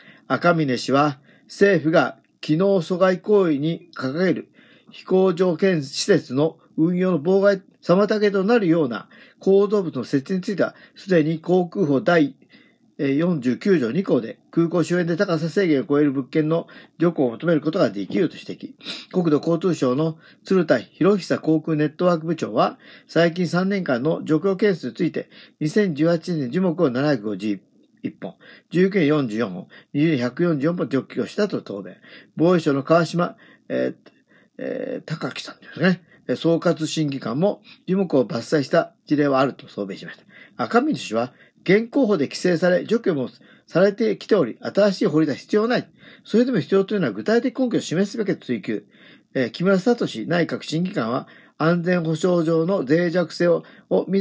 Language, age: Japanese, 50-69